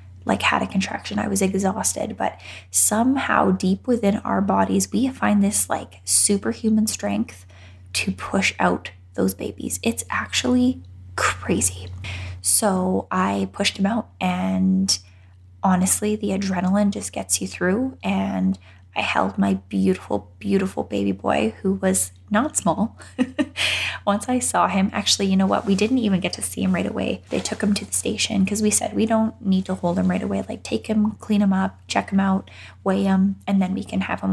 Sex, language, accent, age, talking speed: female, English, American, 10-29, 180 wpm